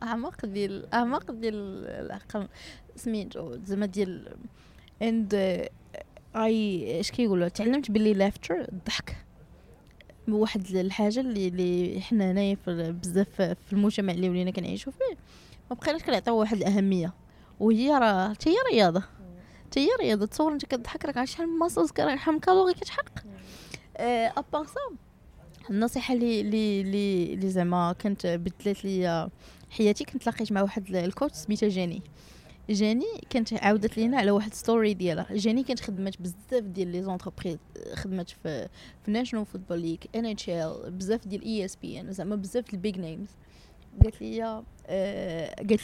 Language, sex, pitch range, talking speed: Arabic, female, 185-230 Hz, 150 wpm